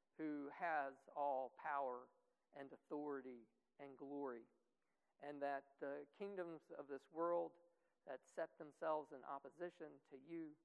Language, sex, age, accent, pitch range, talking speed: English, male, 50-69, American, 135-160 Hz, 125 wpm